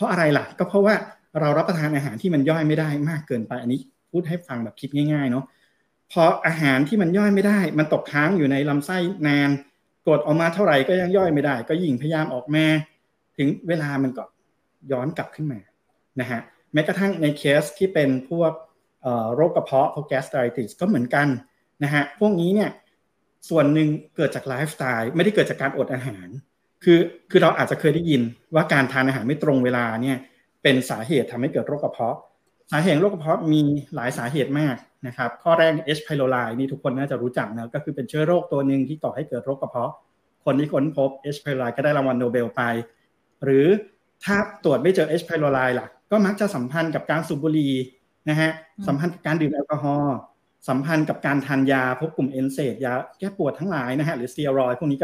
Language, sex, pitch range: Thai, male, 135-160 Hz